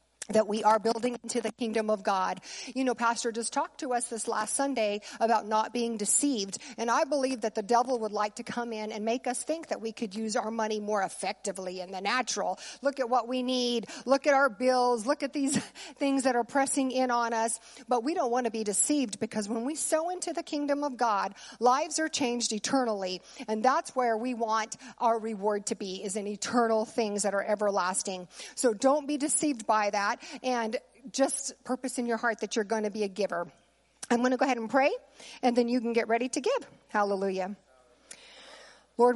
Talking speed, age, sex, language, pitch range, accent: 215 wpm, 50-69, female, English, 215-255 Hz, American